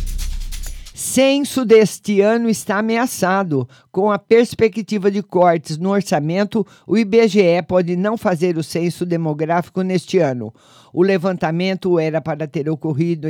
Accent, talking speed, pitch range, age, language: Brazilian, 125 wpm, 160-205 Hz, 50-69, Portuguese